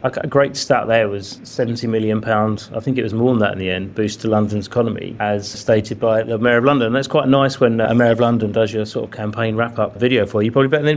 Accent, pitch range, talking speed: British, 120-140 Hz, 265 wpm